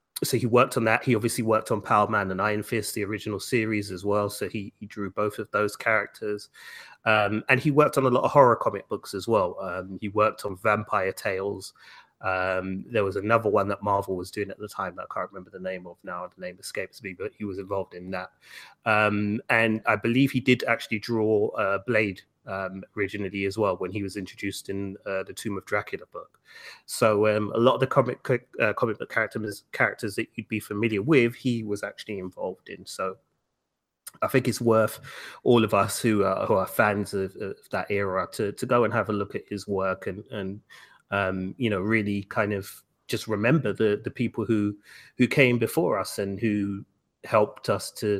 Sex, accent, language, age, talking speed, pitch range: male, British, English, 30-49, 215 wpm, 100-110 Hz